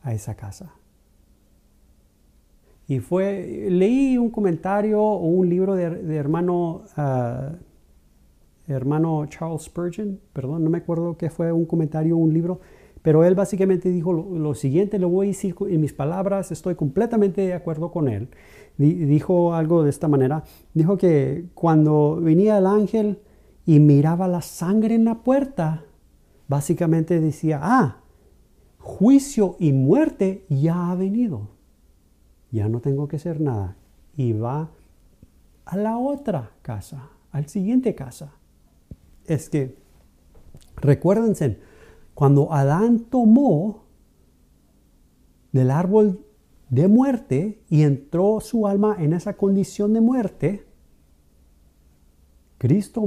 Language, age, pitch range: Spanish, 40-59, 120-195 Hz